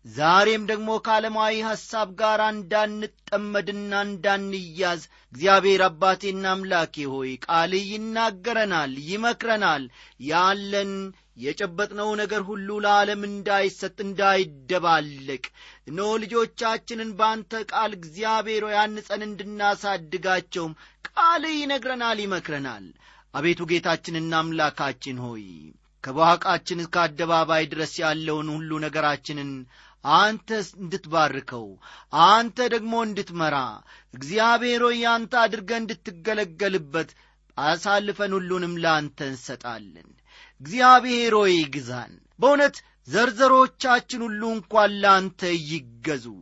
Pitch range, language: 160-220 Hz, Amharic